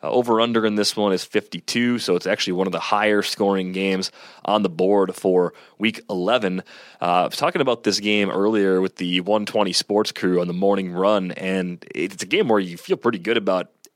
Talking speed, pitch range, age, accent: 205 wpm, 95-110 Hz, 30-49, American